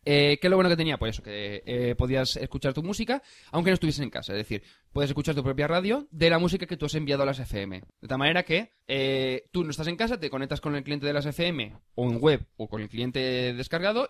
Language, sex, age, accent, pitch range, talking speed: Spanish, male, 20-39, Spanish, 125-170 Hz, 270 wpm